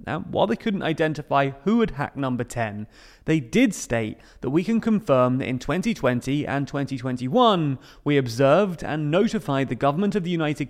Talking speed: 175 wpm